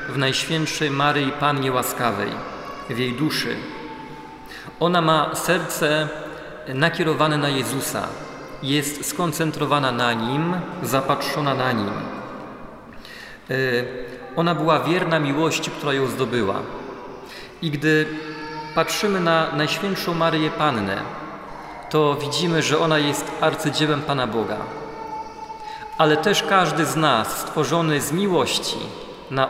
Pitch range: 145-160 Hz